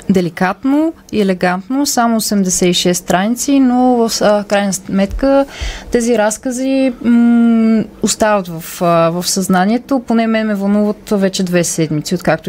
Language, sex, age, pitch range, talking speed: Bulgarian, female, 20-39, 180-230 Hz, 130 wpm